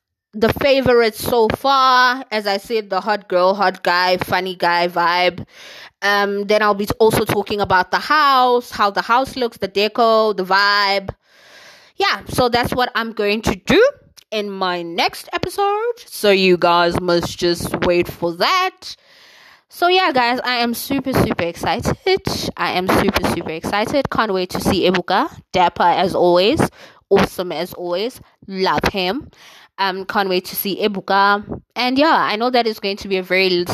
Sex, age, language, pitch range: female, 20-39, English, 185-235 Hz